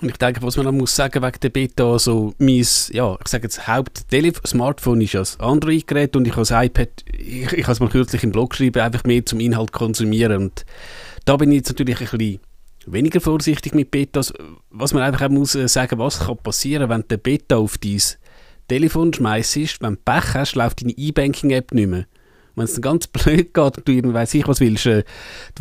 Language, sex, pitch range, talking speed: German, male, 115-140 Hz, 220 wpm